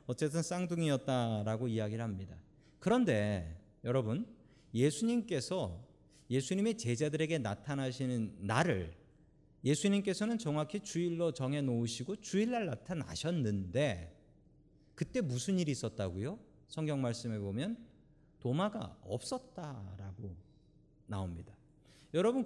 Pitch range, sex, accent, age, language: 120-180 Hz, male, native, 40-59, Korean